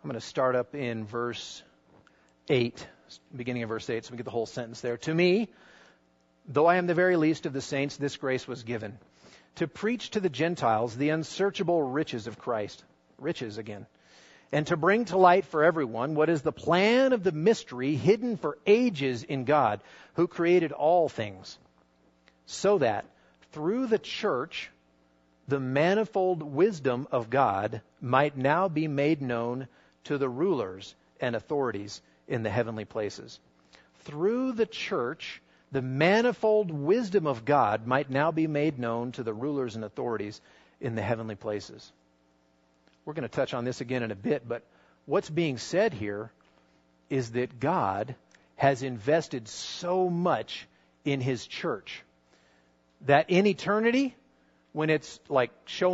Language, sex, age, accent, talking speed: English, male, 40-59, American, 160 wpm